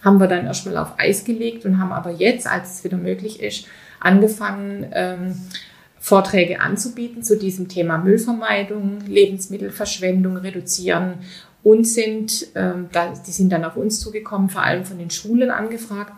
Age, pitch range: 30-49, 180-210 Hz